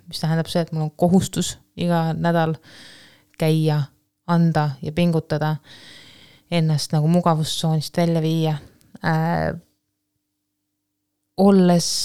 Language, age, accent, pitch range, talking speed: English, 20-39, Finnish, 160-190 Hz, 100 wpm